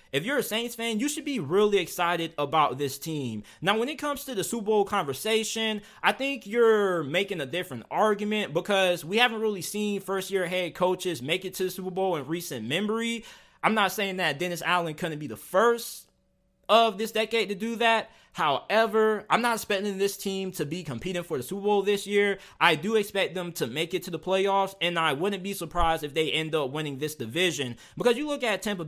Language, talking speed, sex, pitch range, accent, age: English, 215 wpm, male, 165-200 Hz, American, 20-39